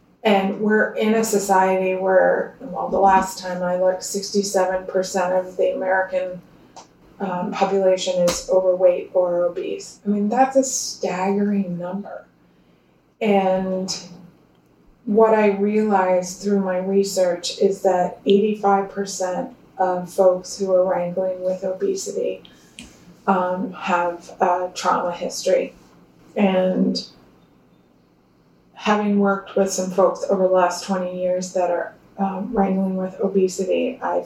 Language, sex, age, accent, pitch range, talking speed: English, female, 20-39, American, 185-205 Hz, 120 wpm